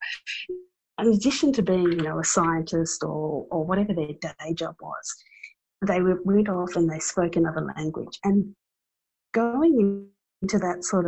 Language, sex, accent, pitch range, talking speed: English, female, Australian, 160-195 Hz, 150 wpm